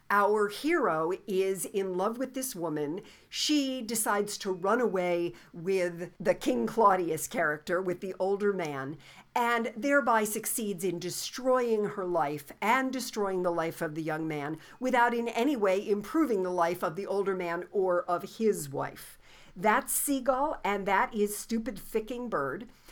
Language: English